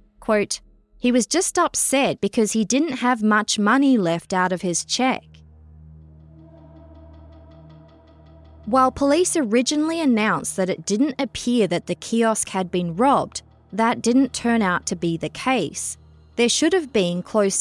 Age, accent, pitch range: 20-39, Australian, 175-240 Hz